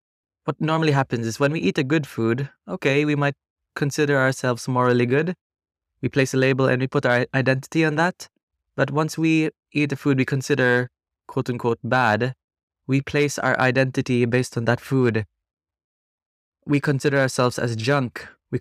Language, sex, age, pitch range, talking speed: Italian, male, 20-39, 120-145 Hz, 170 wpm